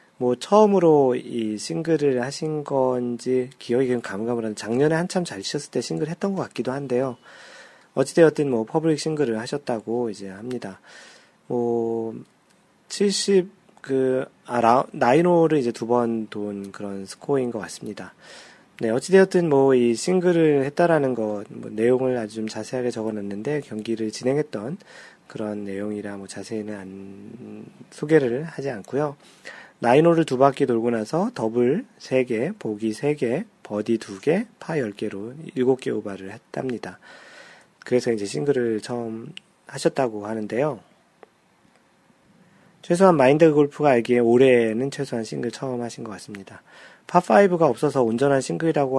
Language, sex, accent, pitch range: Korean, male, native, 110-150 Hz